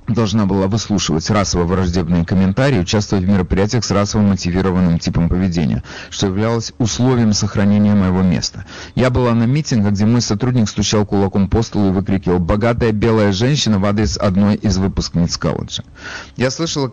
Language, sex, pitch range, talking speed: Russian, male, 95-115 Hz, 150 wpm